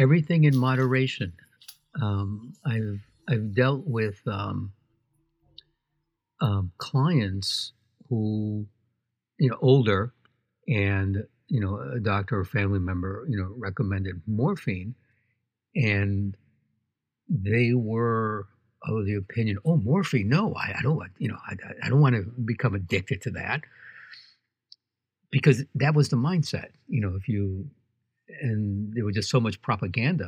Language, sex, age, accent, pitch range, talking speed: English, male, 60-79, American, 105-135 Hz, 135 wpm